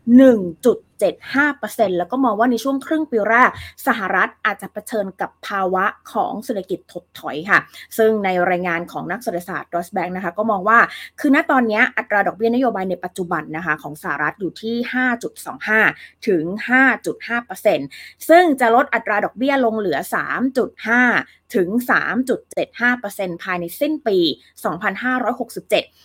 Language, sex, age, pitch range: Thai, female, 20-39, 185-255 Hz